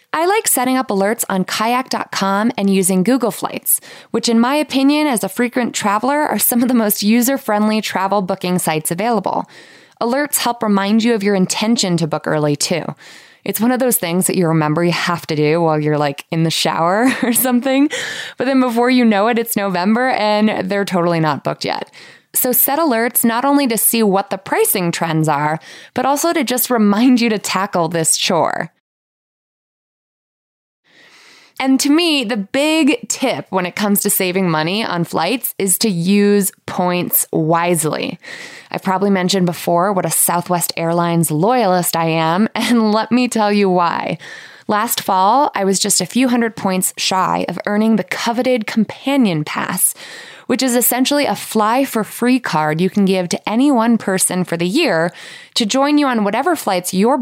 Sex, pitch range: female, 185-250 Hz